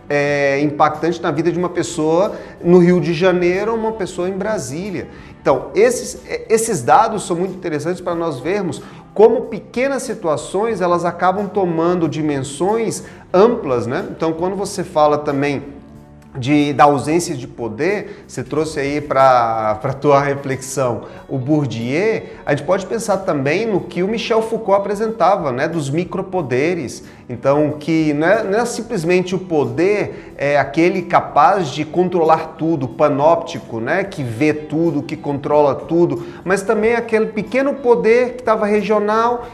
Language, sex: Portuguese, male